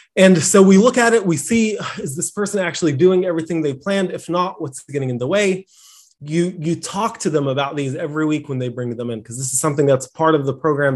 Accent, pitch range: American, 150-195 Hz